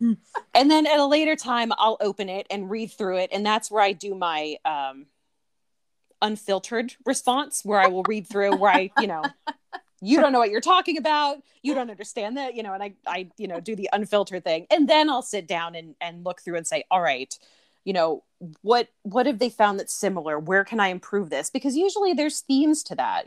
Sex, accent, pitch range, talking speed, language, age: female, American, 170-230 Hz, 220 wpm, English, 30-49